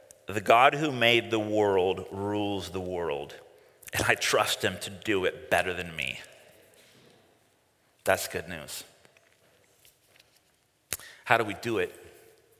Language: English